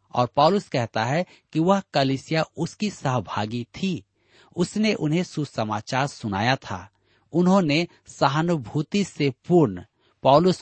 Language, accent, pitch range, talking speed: Hindi, native, 110-155 Hz, 115 wpm